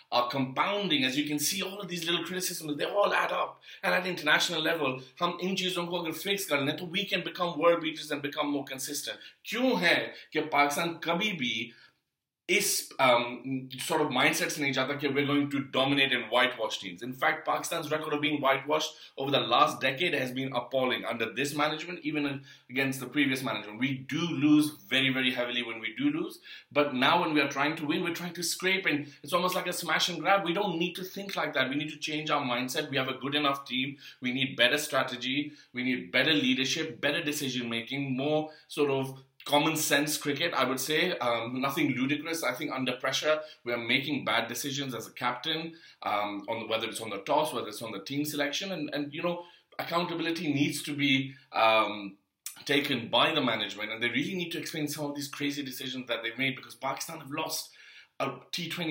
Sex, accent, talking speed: male, Indian, 210 wpm